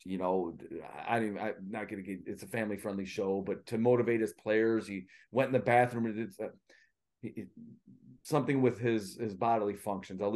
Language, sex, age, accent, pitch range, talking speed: English, male, 30-49, American, 105-130 Hz, 190 wpm